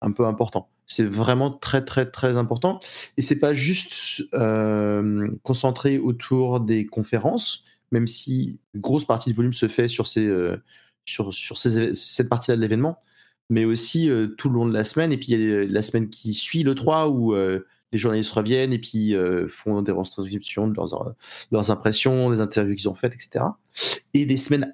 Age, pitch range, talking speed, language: 30-49, 110-135 Hz, 195 wpm, French